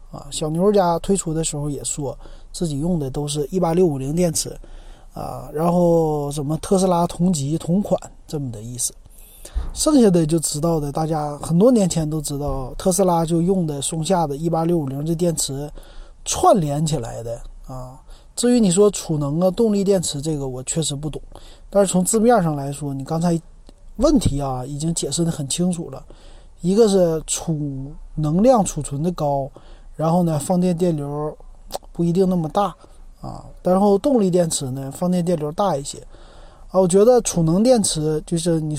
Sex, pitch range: male, 145-190 Hz